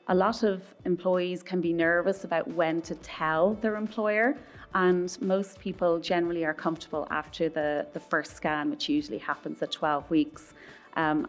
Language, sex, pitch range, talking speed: English, female, 155-180 Hz, 165 wpm